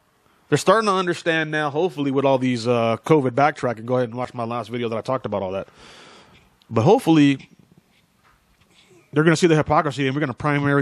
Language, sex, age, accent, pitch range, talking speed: English, male, 30-49, American, 120-150 Hz, 210 wpm